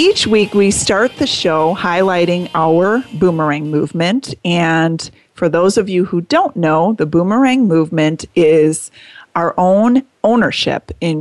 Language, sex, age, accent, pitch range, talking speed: English, female, 30-49, American, 155-195 Hz, 140 wpm